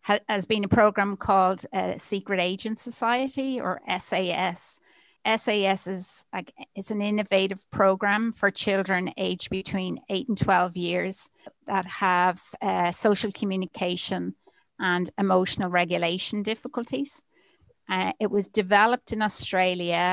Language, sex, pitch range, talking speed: English, female, 185-215 Hz, 120 wpm